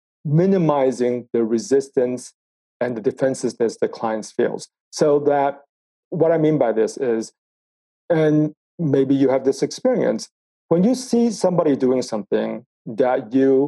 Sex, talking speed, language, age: male, 135 wpm, English, 40-59